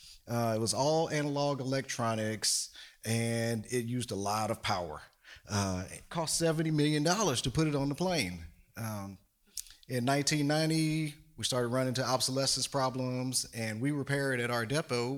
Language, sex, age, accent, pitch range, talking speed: English, male, 30-49, American, 115-150 Hz, 160 wpm